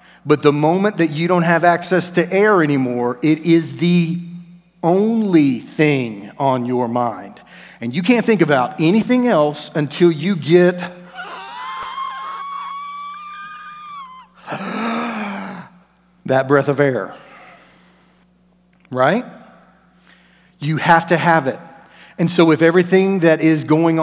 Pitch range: 135-180 Hz